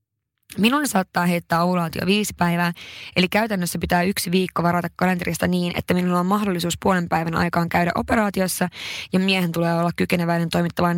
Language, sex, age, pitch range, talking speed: Finnish, female, 20-39, 170-195 Hz, 160 wpm